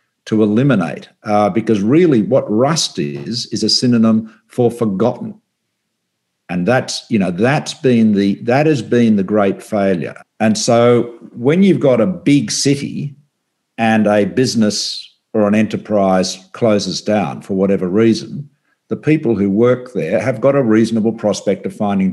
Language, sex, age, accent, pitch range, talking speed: English, male, 50-69, Australian, 100-120 Hz, 155 wpm